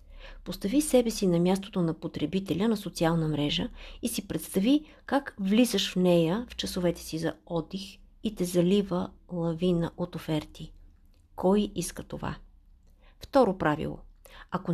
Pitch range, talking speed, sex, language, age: 165-205 Hz, 140 wpm, female, Bulgarian, 50-69